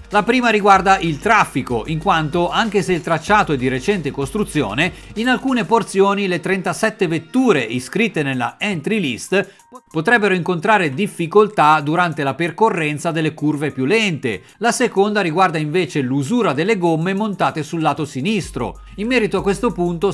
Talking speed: 150 wpm